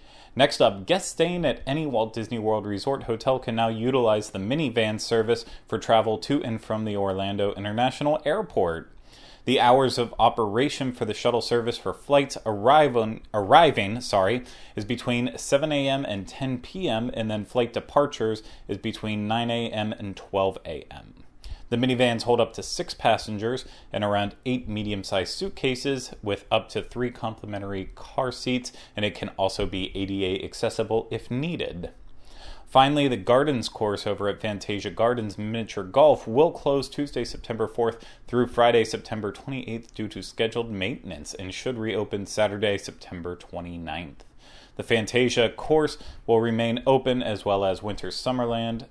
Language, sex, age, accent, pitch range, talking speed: English, male, 30-49, American, 100-125 Hz, 155 wpm